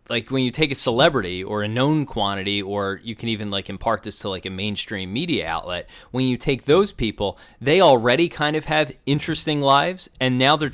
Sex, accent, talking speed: male, American, 210 wpm